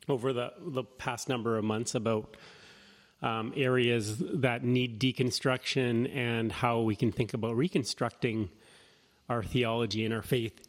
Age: 30-49